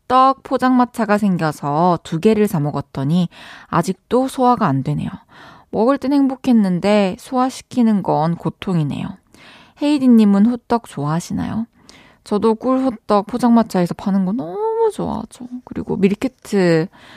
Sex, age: female, 20-39